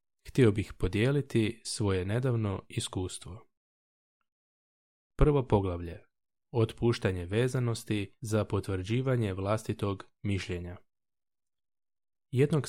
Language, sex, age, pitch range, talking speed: Croatian, male, 20-39, 100-120 Hz, 70 wpm